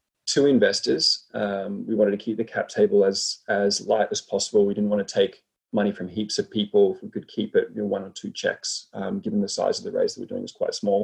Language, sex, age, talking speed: English, male, 20-39, 265 wpm